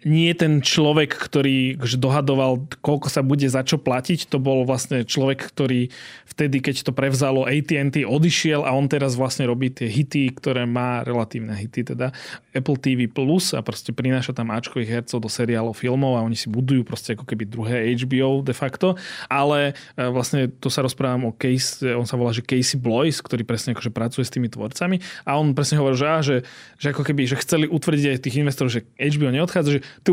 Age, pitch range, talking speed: 20-39, 125-150 Hz, 195 wpm